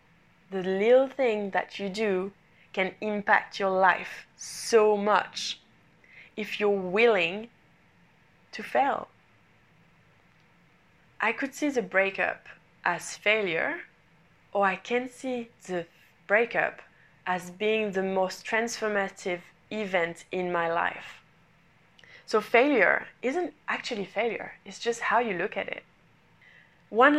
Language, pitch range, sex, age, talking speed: English, 180-220 Hz, female, 20-39, 115 wpm